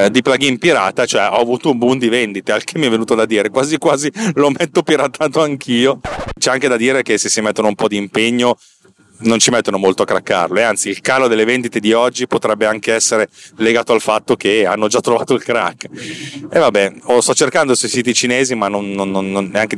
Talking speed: 225 wpm